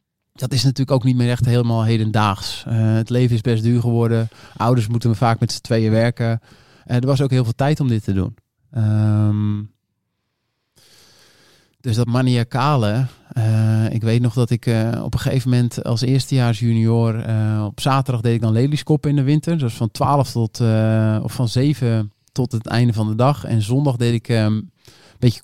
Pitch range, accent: 110-130 Hz, Dutch